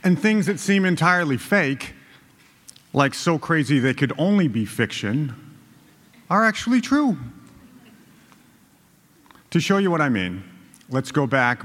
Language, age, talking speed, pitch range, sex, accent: English, 50-69, 135 wpm, 115-155 Hz, male, American